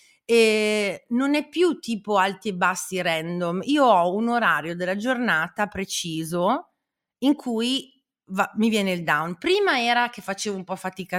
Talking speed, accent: 160 wpm, native